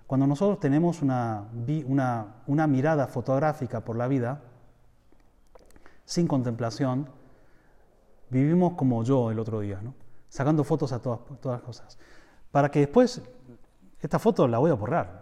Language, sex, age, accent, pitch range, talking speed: Spanish, male, 30-49, Argentinian, 110-145 Hz, 140 wpm